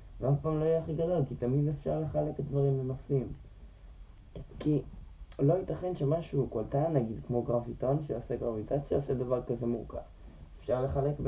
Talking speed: 145 wpm